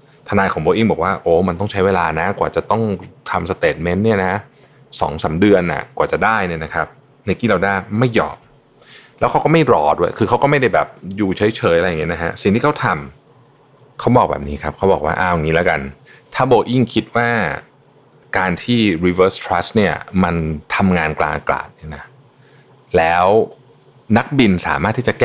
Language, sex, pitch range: Thai, male, 90-120 Hz